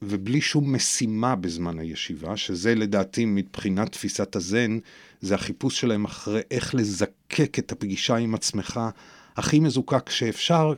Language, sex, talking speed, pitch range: Hebrew, male, 130 wpm, 105-150 Hz